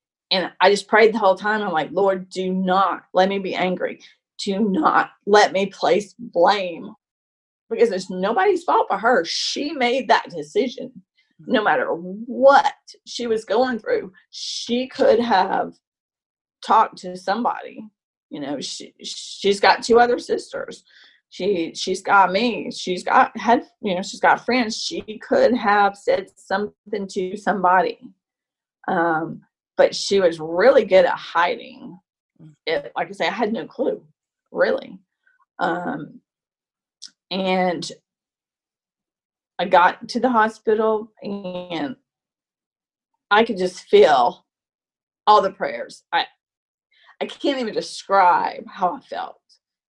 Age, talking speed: 30-49, 135 wpm